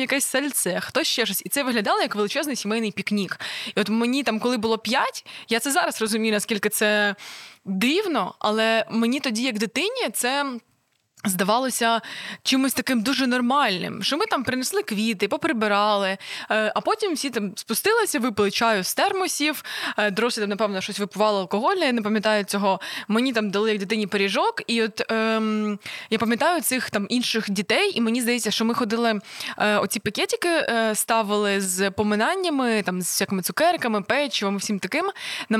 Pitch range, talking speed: 205-265 Hz, 170 wpm